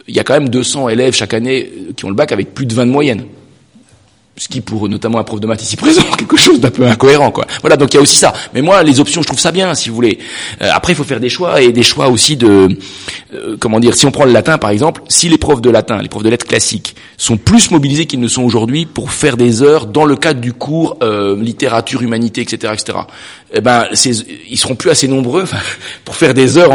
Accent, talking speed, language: French, 265 wpm, French